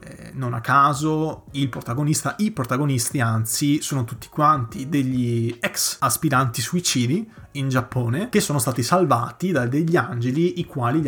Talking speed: 145 wpm